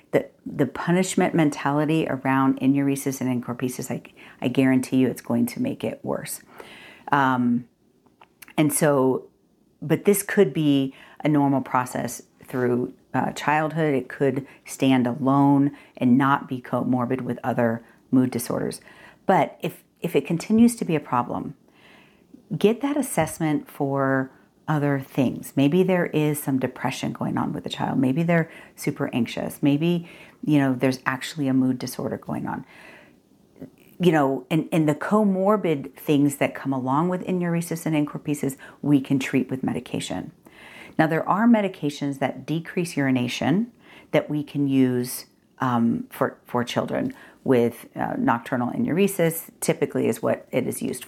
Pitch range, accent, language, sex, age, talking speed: 130-160 Hz, American, English, female, 50-69, 150 wpm